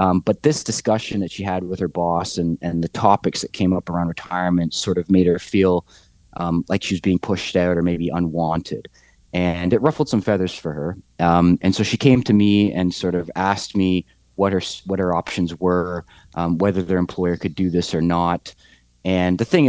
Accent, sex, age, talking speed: American, male, 30-49, 215 wpm